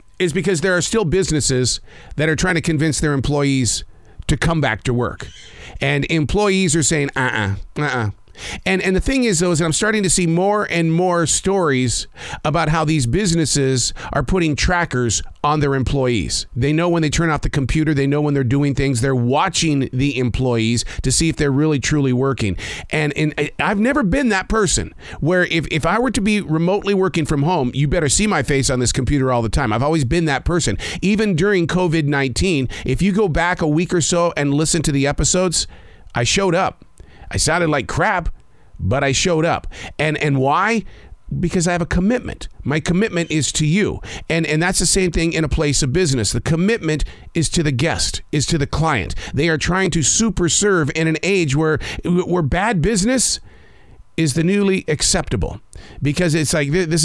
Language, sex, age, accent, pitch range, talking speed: English, male, 40-59, American, 135-180 Hz, 205 wpm